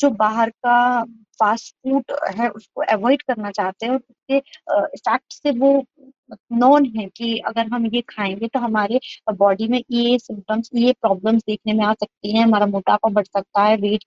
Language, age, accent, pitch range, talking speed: Hindi, 20-39, native, 215-265 Hz, 165 wpm